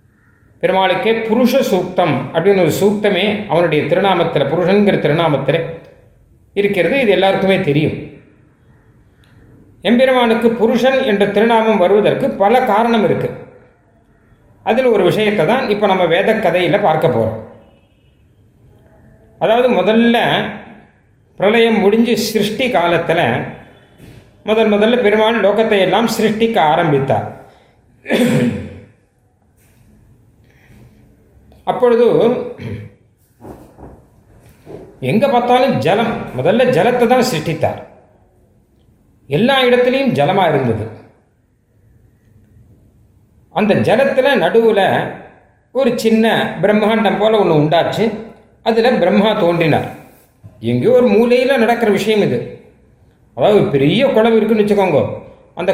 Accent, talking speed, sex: native, 85 wpm, male